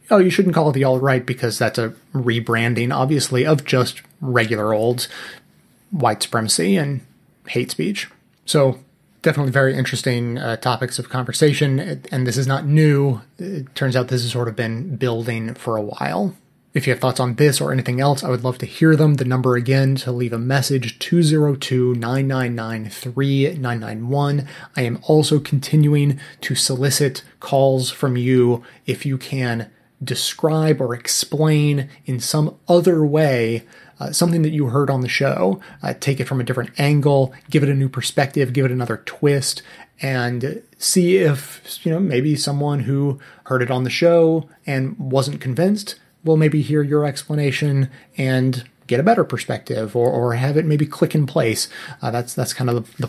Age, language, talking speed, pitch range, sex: 30-49, English, 175 wpm, 125-150 Hz, male